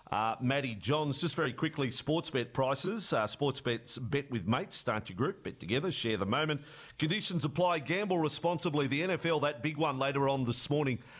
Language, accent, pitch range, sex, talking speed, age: English, Australian, 125-160 Hz, male, 195 wpm, 40-59